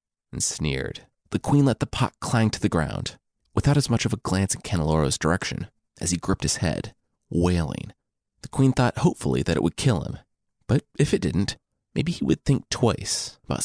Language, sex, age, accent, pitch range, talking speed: English, male, 30-49, American, 85-120 Hz, 200 wpm